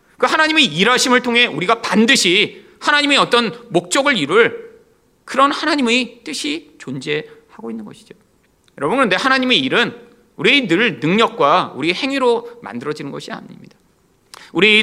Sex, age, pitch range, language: male, 40-59, 175-265 Hz, Korean